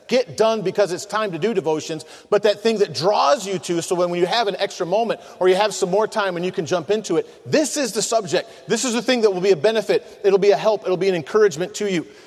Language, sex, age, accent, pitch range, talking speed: English, male, 40-59, American, 190-245 Hz, 280 wpm